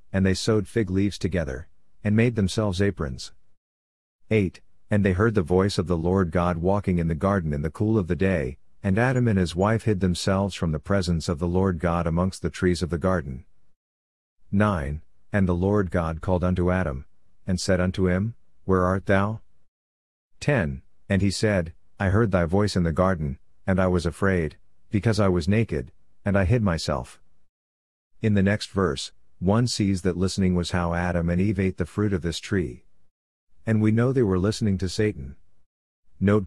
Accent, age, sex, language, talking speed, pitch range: American, 50-69, male, English, 190 wpm, 85-100 Hz